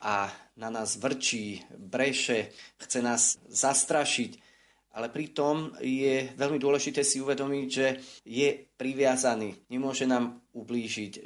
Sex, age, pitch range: male, 30-49, 115-140 Hz